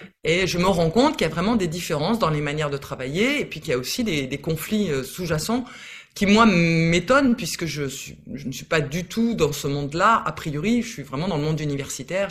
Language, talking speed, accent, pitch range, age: French, 245 wpm, French, 150-220 Hz, 20-39